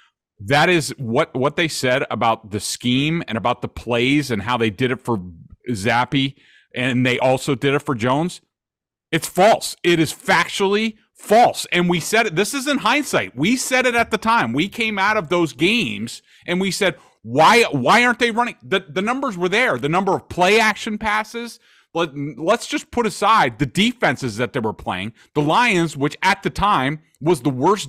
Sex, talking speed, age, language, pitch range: male, 200 wpm, 30-49, English, 145-220 Hz